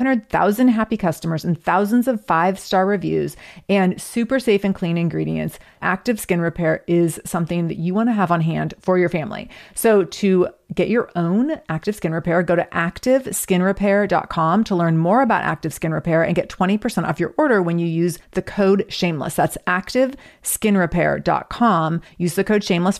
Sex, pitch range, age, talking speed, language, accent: female, 175-220 Hz, 30-49, 185 wpm, English, American